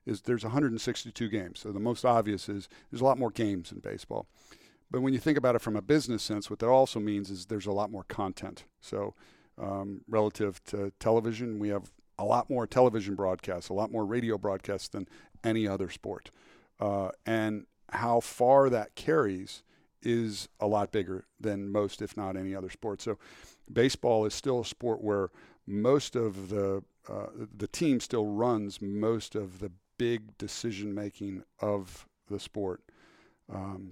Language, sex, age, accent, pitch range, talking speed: English, male, 50-69, American, 95-110 Hz, 175 wpm